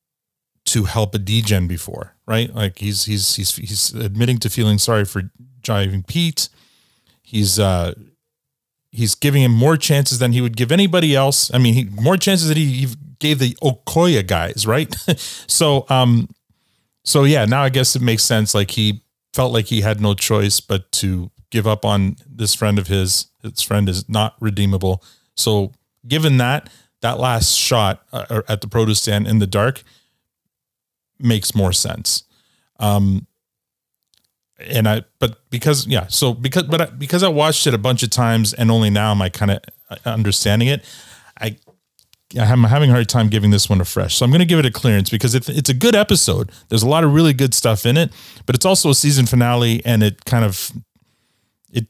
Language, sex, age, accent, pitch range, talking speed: English, male, 30-49, American, 105-130 Hz, 190 wpm